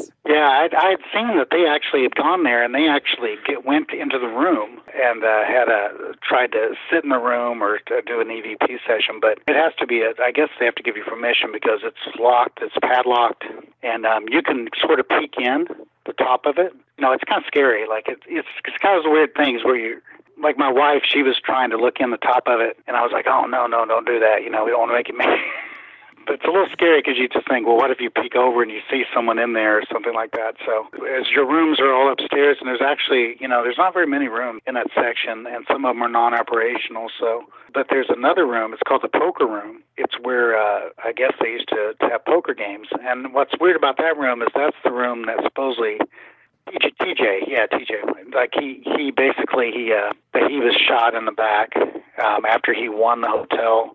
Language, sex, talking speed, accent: English, male, 240 wpm, American